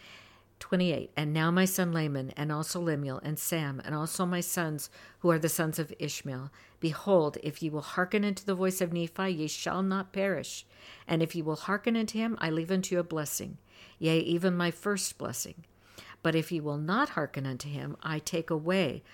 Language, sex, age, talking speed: English, female, 60-79, 205 wpm